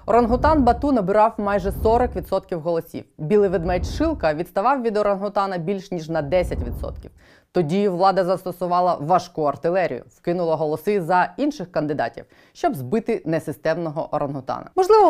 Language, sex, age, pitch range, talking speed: Ukrainian, female, 20-39, 165-215 Hz, 125 wpm